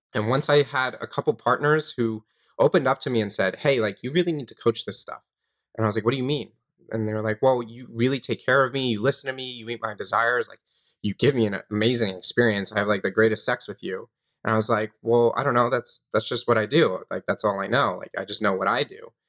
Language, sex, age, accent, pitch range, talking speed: English, male, 30-49, American, 110-130 Hz, 285 wpm